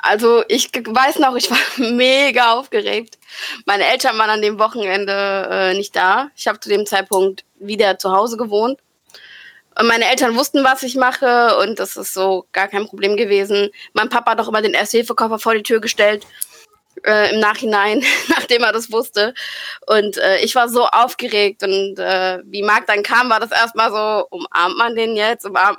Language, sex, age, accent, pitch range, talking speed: German, female, 20-39, German, 205-245 Hz, 185 wpm